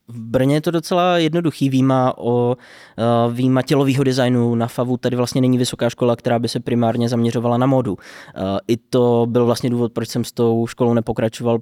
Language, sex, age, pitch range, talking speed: Czech, male, 20-39, 115-125 Hz, 185 wpm